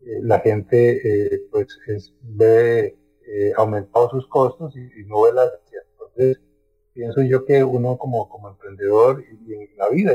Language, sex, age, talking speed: English, male, 40-59, 165 wpm